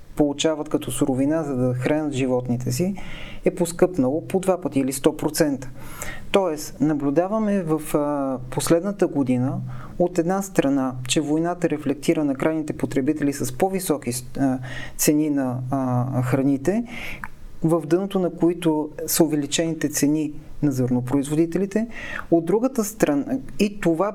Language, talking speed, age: Bulgarian, 120 wpm, 30-49